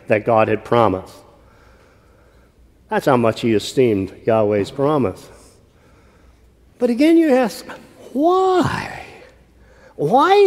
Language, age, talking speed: English, 50-69, 95 wpm